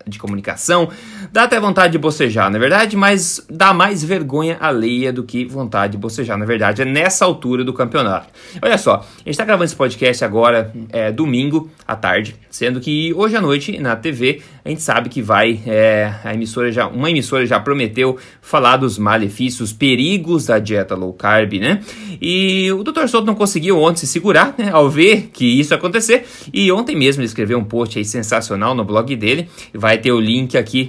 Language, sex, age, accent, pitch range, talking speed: Portuguese, male, 20-39, Brazilian, 115-170 Hz, 205 wpm